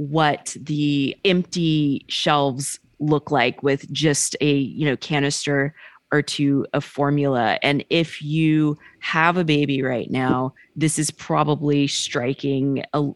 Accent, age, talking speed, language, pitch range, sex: American, 30-49, 130 wpm, English, 140-155 Hz, female